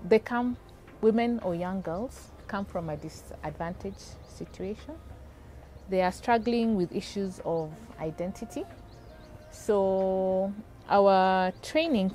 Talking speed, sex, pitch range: 105 wpm, female, 155-205 Hz